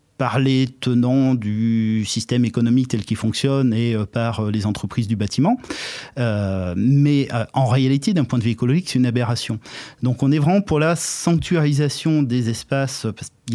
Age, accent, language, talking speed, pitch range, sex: 30-49, French, French, 170 wpm, 115-145 Hz, male